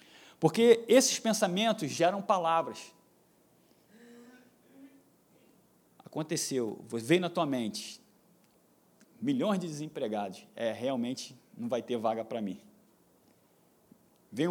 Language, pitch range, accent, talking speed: Portuguese, 150-225 Hz, Brazilian, 90 wpm